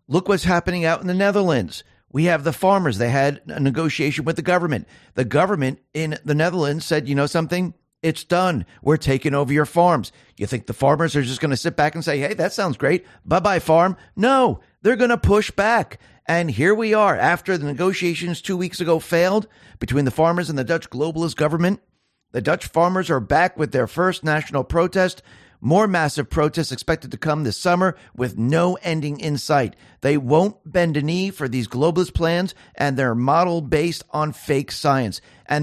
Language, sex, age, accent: English, male, 50-69, American